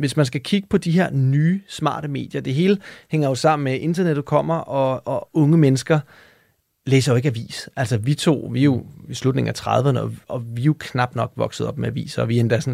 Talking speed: 250 wpm